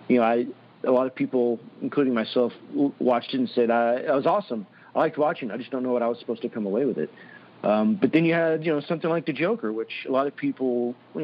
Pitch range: 110-140 Hz